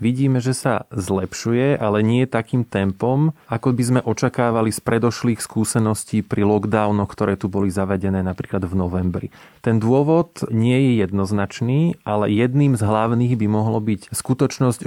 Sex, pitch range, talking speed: male, 105-125 Hz, 150 wpm